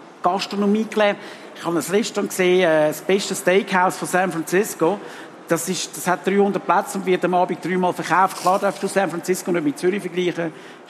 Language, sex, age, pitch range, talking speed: German, male, 50-69, 180-245 Hz, 195 wpm